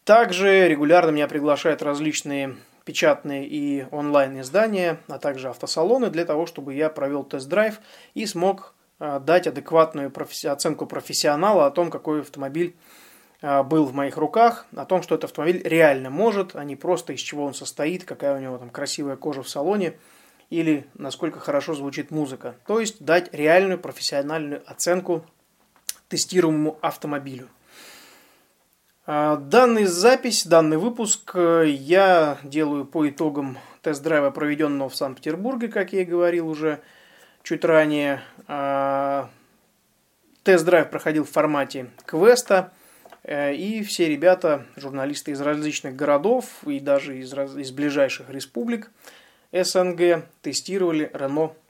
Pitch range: 140-180 Hz